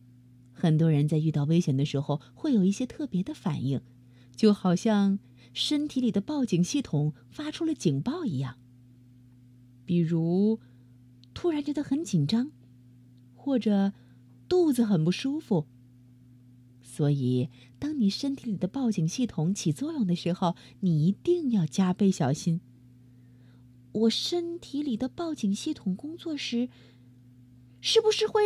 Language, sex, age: Chinese, female, 30-49